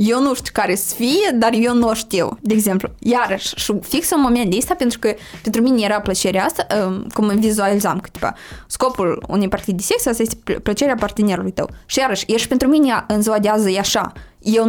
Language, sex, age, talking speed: Romanian, female, 20-39, 210 wpm